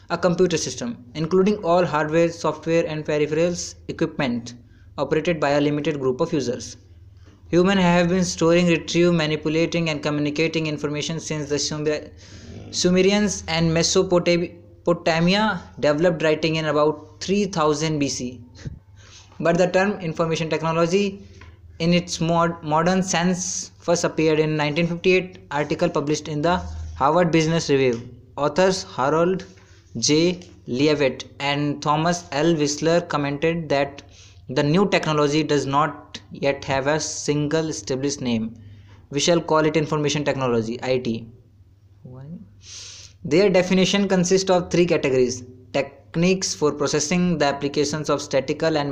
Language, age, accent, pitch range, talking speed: English, 20-39, Indian, 130-165 Hz, 120 wpm